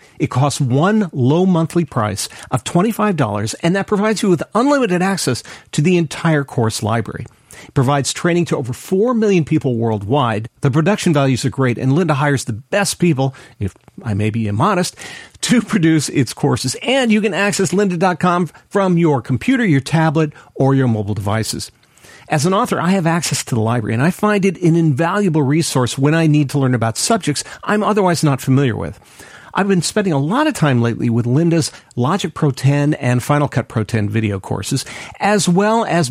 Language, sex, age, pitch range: English, male, 40-59, 125-190 Hz